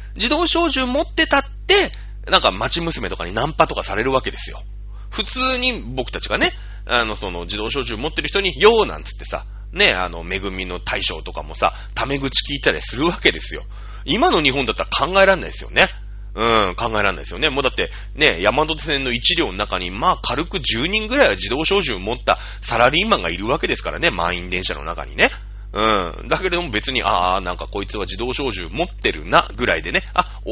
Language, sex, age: Japanese, male, 30-49